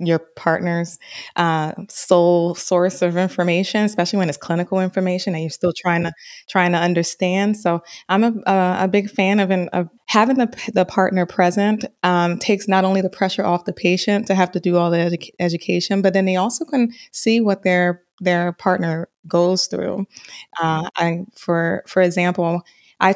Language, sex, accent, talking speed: English, female, American, 180 wpm